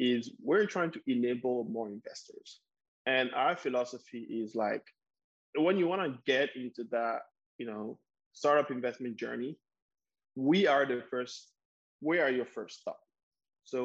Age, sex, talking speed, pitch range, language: 20-39, male, 145 wpm, 120-145 Hz, English